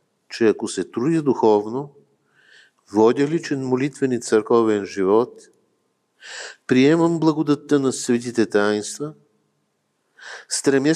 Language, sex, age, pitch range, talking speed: Bulgarian, male, 50-69, 105-125 Hz, 95 wpm